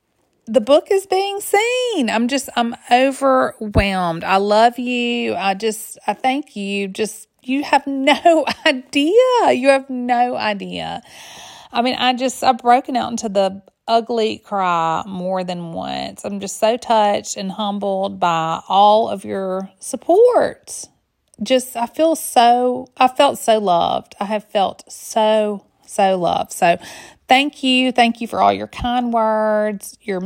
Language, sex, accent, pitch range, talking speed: English, female, American, 200-255 Hz, 150 wpm